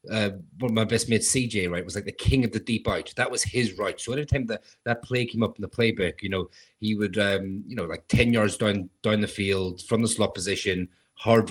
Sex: male